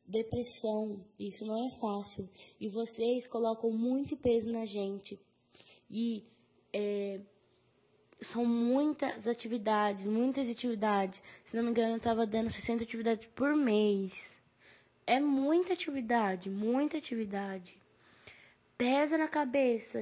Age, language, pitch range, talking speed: 10-29, Portuguese, 210-250 Hz, 115 wpm